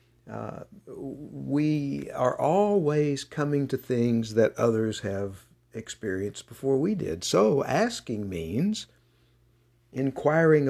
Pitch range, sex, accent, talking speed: 110-140 Hz, male, American, 100 wpm